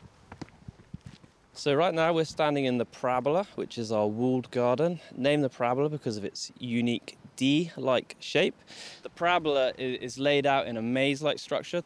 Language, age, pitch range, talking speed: English, 20-39, 115-150 Hz, 155 wpm